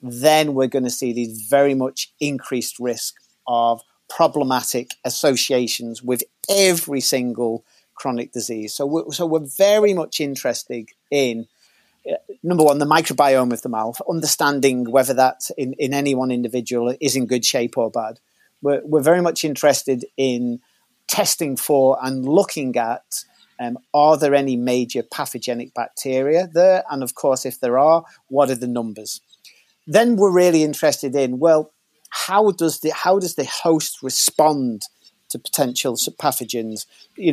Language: English